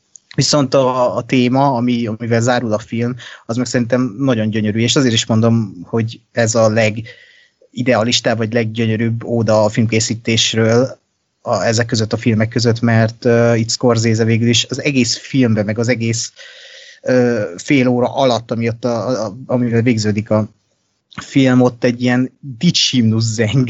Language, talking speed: Hungarian, 155 wpm